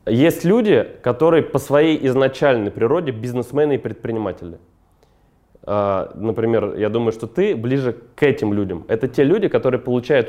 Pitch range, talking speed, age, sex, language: 110-150 Hz, 140 wpm, 20-39, male, Russian